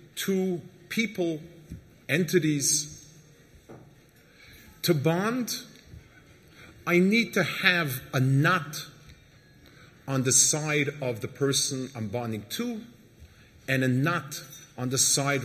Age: 40-59